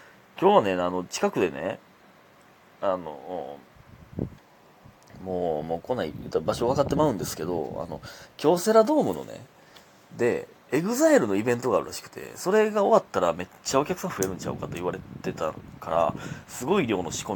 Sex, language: male, Japanese